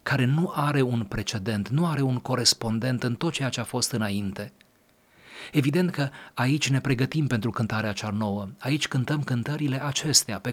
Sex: male